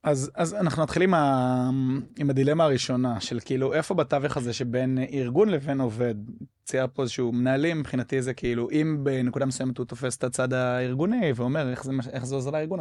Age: 20-39